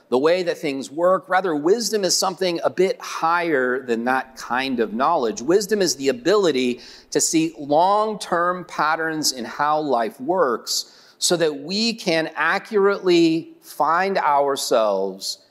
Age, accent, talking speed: 40-59, American, 140 wpm